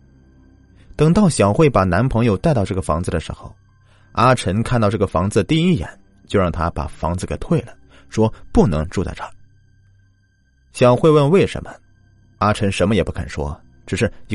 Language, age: Chinese, 30-49